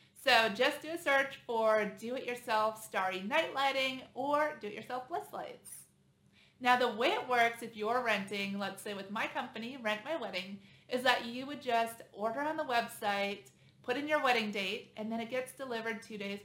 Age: 30-49